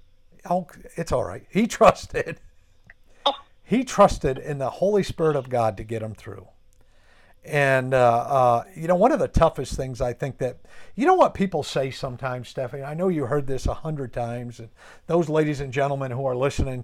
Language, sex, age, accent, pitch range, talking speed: English, male, 50-69, American, 125-170 Hz, 190 wpm